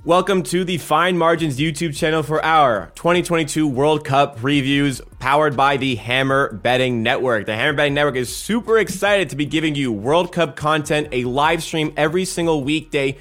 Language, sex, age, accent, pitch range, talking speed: English, male, 20-39, American, 120-155 Hz, 175 wpm